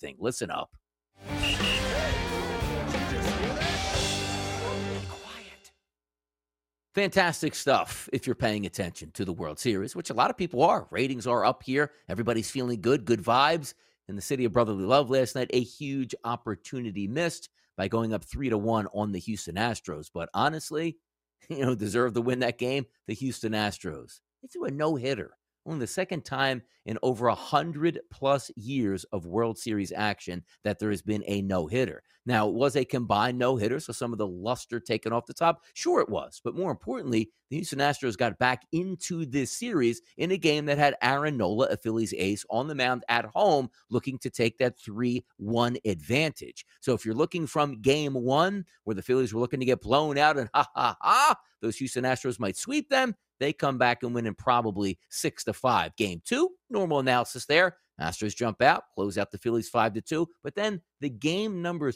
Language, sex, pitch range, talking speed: English, male, 105-145 Hz, 180 wpm